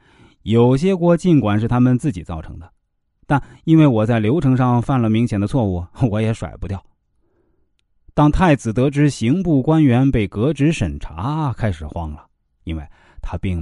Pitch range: 95-150 Hz